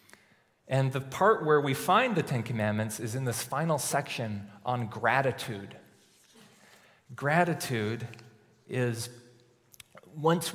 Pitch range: 110-135 Hz